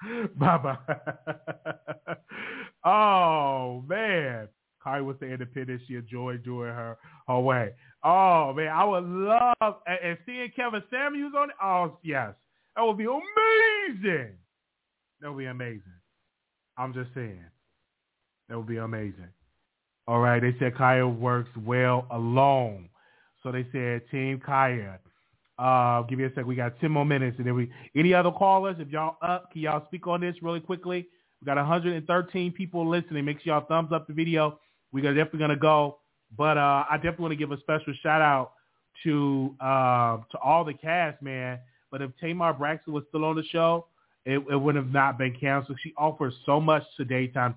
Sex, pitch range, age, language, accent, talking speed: male, 125-160 Hz, 30-49, English, American, 170 wpm